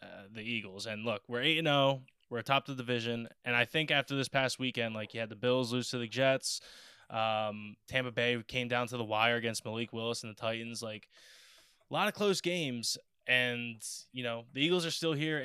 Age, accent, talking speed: 10-29, American, 225 wpm